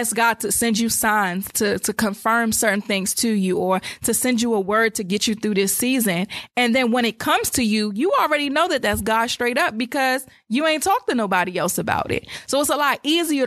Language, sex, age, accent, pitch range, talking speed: English, female, 20-39, American, 215-255 Hz, 240 wpm